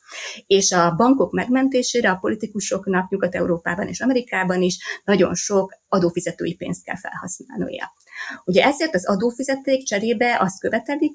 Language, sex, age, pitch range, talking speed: Hungarian, female, 20-39, 175-230 Hz, 125 wpm